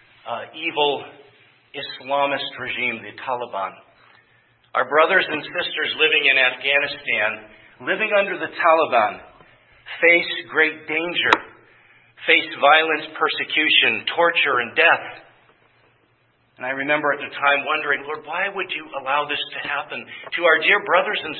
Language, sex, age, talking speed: English, male, 50-69, 125 wpm